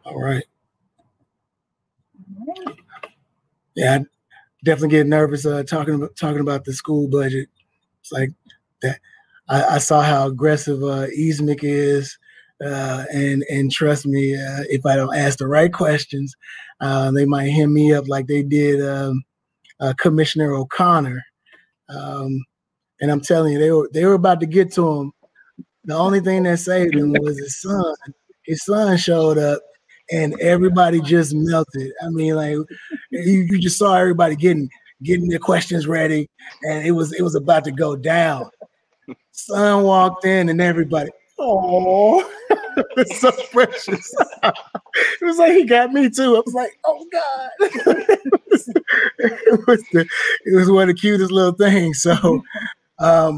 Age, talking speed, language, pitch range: 20-39, 160 wpm, English, 145-190 Hz